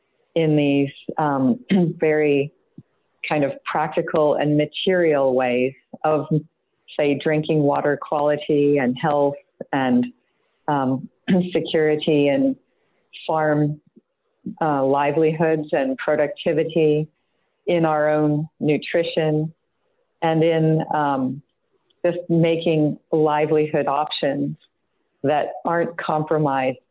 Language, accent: English, American